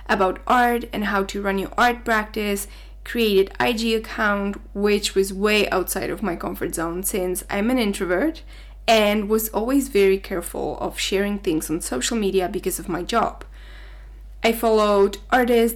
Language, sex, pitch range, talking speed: English, female, 195-230 Hz, 160 wpm